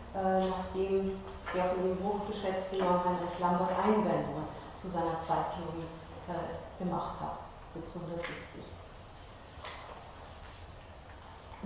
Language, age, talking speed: German, 40-59, 80 wpm